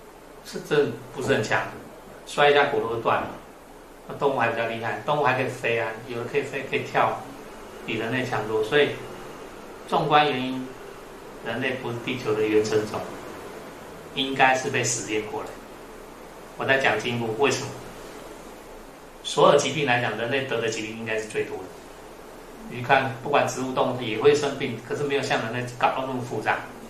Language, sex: Chinese, male